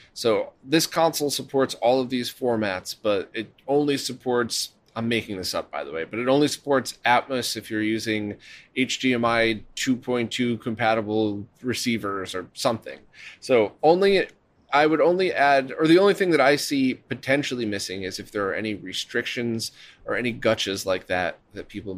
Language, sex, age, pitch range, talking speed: English, male, 30-49, 105-135 Hz, 165 wpm